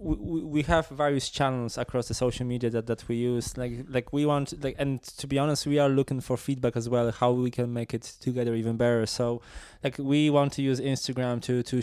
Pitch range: 115-125 Hz